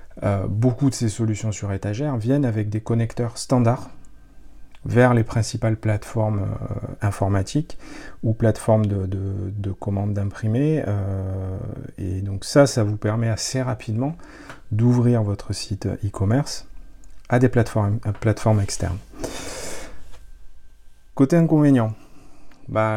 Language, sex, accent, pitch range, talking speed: French, male, French, 105-125 Hz, 125 wpm